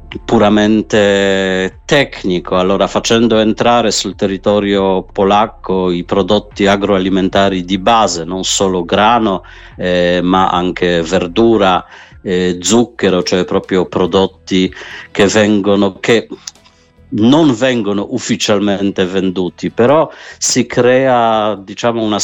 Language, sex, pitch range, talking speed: Italian, male, 95-110 Hz, 100 wpm